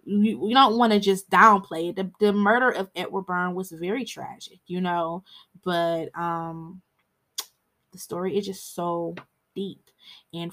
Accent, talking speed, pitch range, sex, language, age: American, 155 wpm, 180-220 Hz, female, English, 20-39